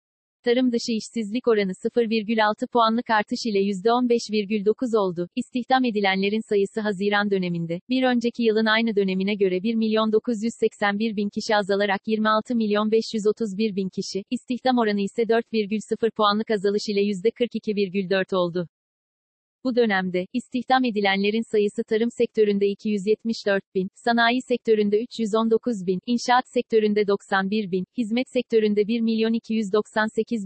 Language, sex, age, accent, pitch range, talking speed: Turkish, female, 40-59, native, 205-230 Hz, 110 wpm